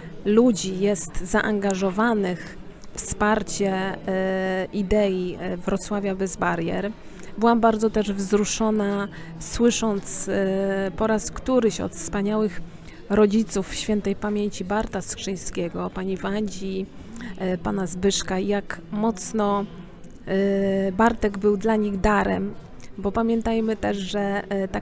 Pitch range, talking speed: 195-220 Hz, 95 wpm